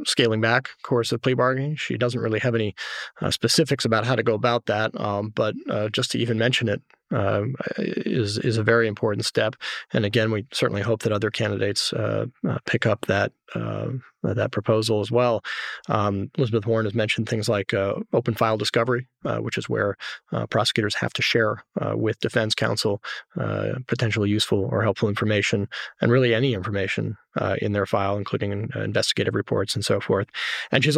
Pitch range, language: 100-120 Hz, English